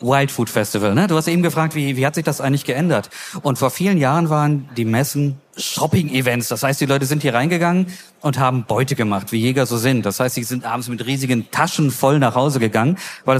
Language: German